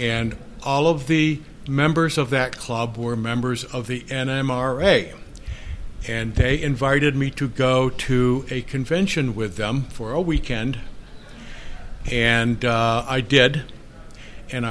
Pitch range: 115-150 Hz